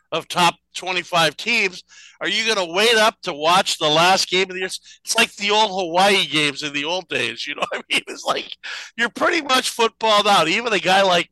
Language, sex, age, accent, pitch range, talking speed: English, male, 50-69, American, 180-235 Hz, 235 wpm